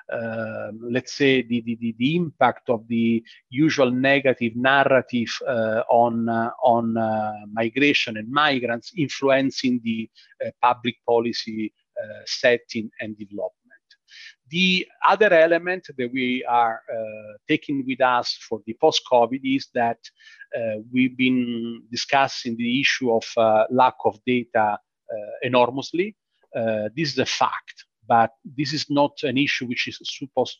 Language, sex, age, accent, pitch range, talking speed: English, male, 40-59, Italian, 115-135 Hz, 140 wpm